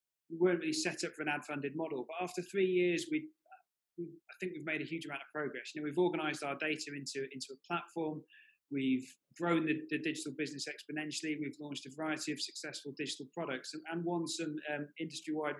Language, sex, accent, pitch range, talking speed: English, male, British, 140-170 Hz, 210 wpm